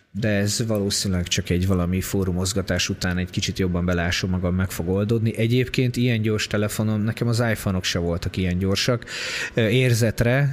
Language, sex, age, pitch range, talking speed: Hungarian, male, 20-39, 95-115 Hz, 160 wpm